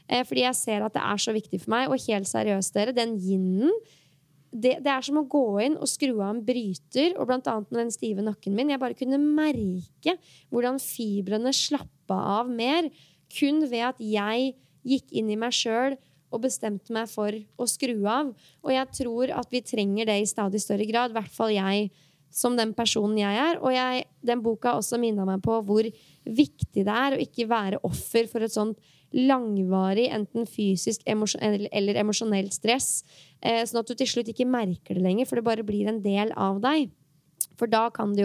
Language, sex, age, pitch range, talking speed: English, female, 20-39, 205-255 Hz, 200 wpm